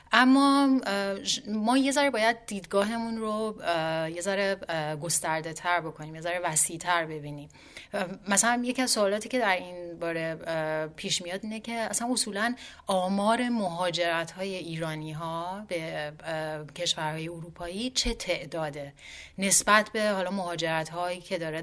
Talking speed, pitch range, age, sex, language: 135 wpm, 160-195 Hz, 30-49, female, Persian